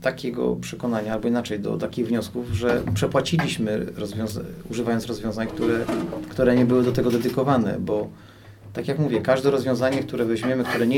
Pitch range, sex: 105-130 Hz, male